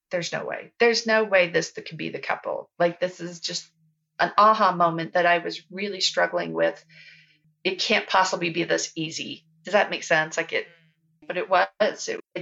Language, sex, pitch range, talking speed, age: English, female, 165-200 Hz, 200 wpm, 40-59